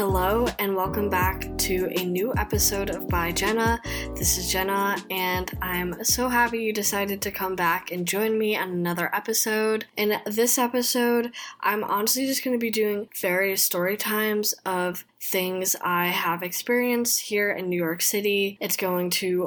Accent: American